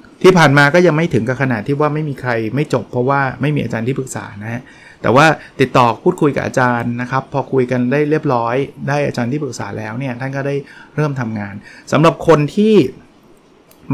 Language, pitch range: Thai, 120-145 Hz